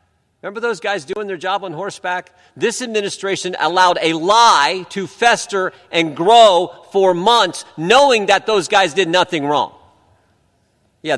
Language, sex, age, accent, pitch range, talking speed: English, male, 50-69, American, 155-200 Hz, 145 wpm